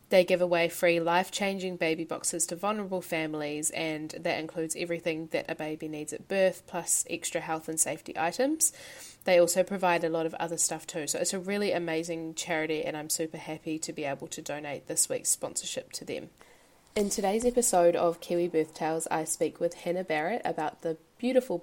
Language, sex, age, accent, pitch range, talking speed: English, female, 20-39, Australian, 160-180 Hz, 195 wpm